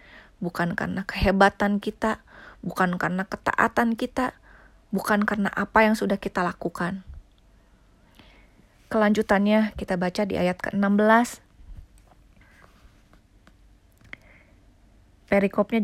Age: 20-39